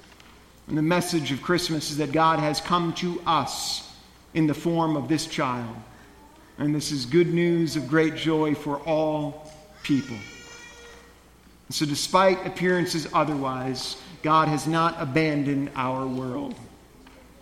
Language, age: English, 40-59